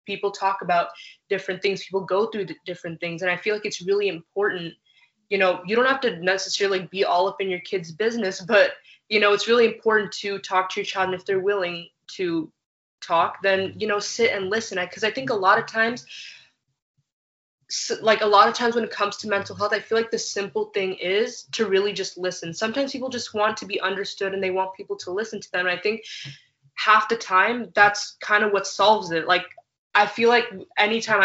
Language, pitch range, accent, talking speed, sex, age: English, 180-210 Hz, American, 220 wpm, female, 20-39